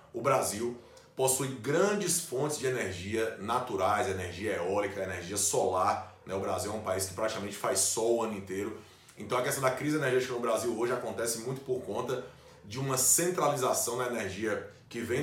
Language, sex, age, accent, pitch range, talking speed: Portuguese, male, 20-39, Brazilian, 105-130 Hz, 175 wpm